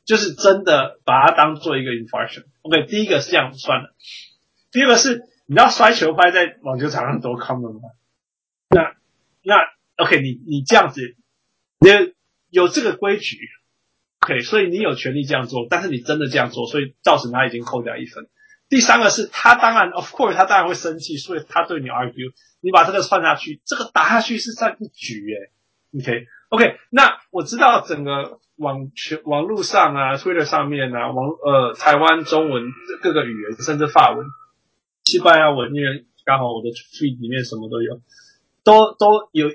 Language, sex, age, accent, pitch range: Chinese, male, 20-39, native, 125-180 Hz